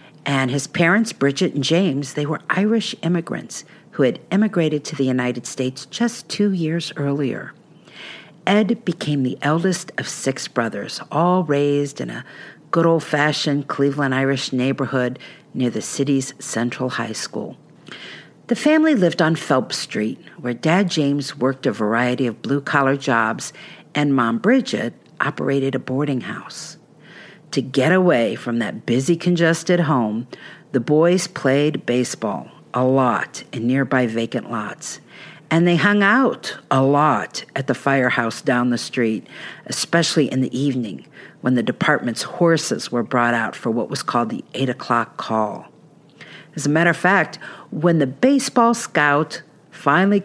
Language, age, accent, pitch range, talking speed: English, 50-69, American, 130-170 Hz, 150 wpm